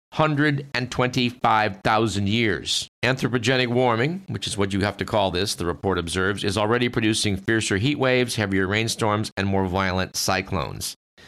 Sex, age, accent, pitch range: male, 50-69, American, 100-125 Hz